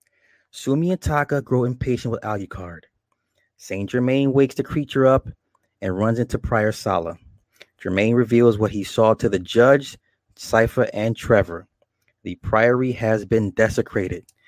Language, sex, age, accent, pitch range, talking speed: English, male, 30-49, American, 100-120 Hz, 140 wpm